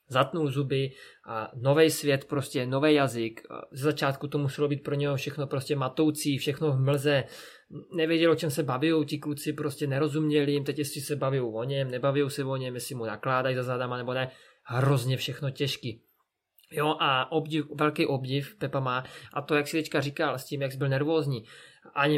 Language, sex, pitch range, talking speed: Czech, male, 135-150 Hz, 185 wpm